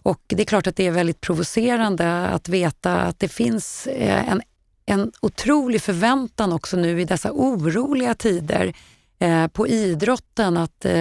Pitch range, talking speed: 175-215 Hz, 145 wpm